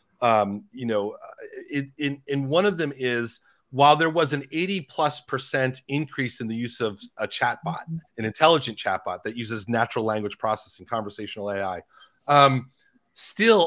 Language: English